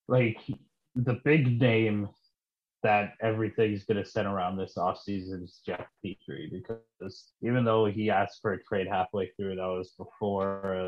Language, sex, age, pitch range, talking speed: English, male, 30-49, 95-110 Hz, 155 wpm